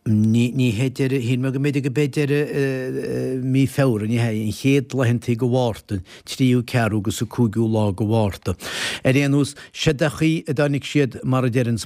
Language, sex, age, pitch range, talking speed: English, male, 60-79, 110-135 Hz, 225 wpm